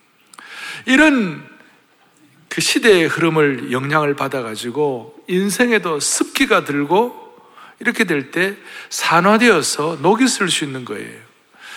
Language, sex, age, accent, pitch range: Korean, male, 60-79, native, 180-255 Hz